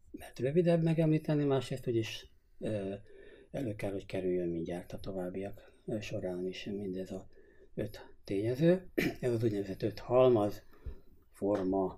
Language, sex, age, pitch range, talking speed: Hungarian, male, 60-79, 95-120 Hz, 130 wpm